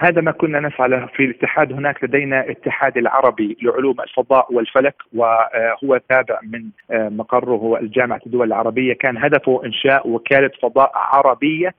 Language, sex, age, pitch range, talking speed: Arabic, male, 40-59, 120-140 Hz, 130 wpm